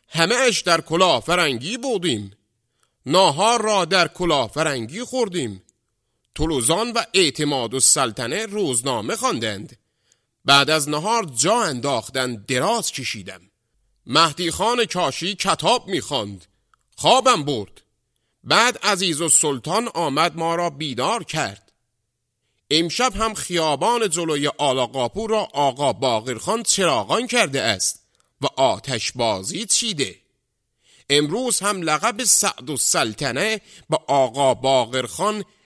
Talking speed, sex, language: 115 wpm, male, Persian